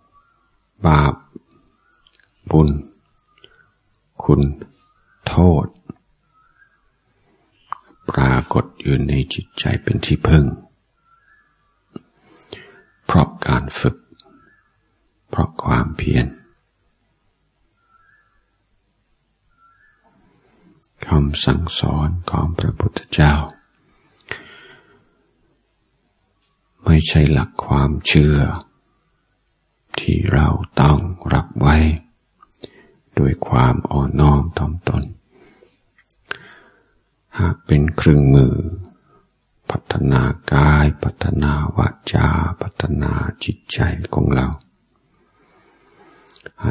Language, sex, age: Thai, male, 60-79